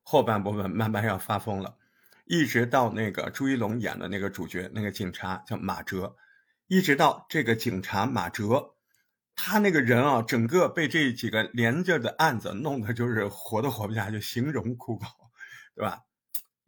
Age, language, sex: 50-69, Chinese, male